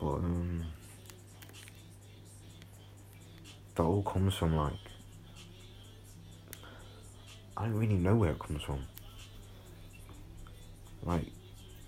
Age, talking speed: 30-49, 80 wpm